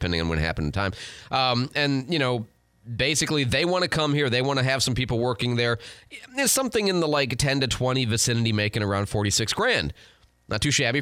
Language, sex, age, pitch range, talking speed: English, male, 30-49, 105-160 Hz, 230 wpm